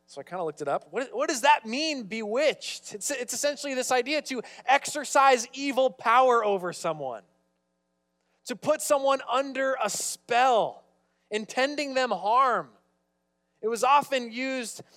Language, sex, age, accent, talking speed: English, male, 20-39, American, 150 wpm